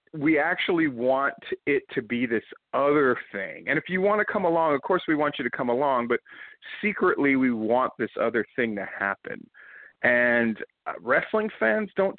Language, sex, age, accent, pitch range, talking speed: English, male, 40-59, American, 125-175 Hz, 180 wpm